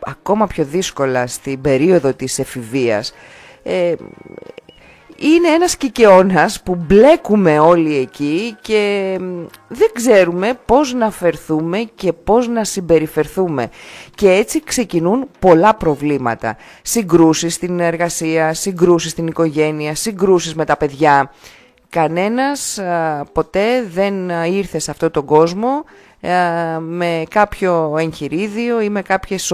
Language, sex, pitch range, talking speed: Greek, female, 155-210 Hz, 115 wpm